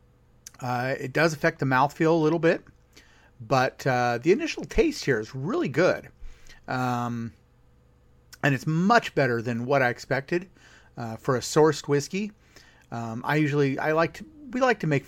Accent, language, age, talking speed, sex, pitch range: American, English, 30-49, 165 wpm, male, 115-155 Hz